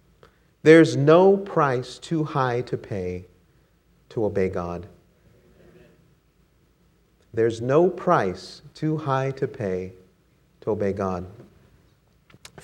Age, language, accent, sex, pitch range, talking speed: 40-59, English, American, male, 100-160 Hz, 100 wpm